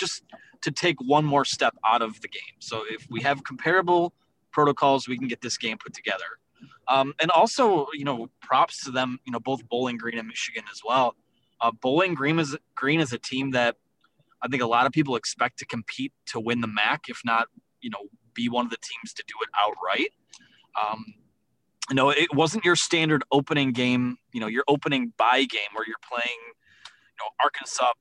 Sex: male